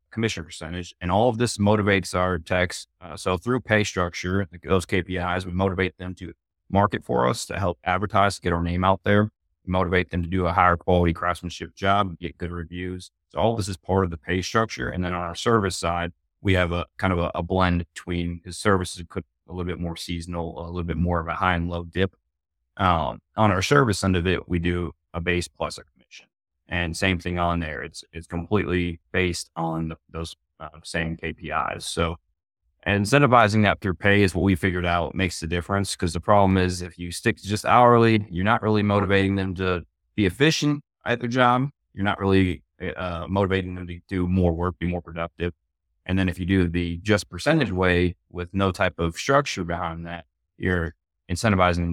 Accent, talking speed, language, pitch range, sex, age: American, 210 wpm, English, 85-95 Hz, male, 30-49